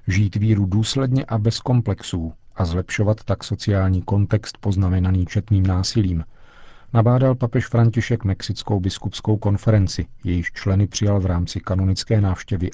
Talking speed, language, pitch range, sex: 125 wpm, Czech, 95-110 Hz, male